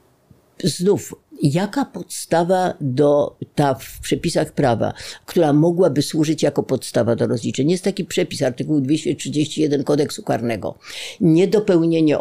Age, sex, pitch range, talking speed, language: 50-69, female, 125-170 Hz, 115 wpm, Polish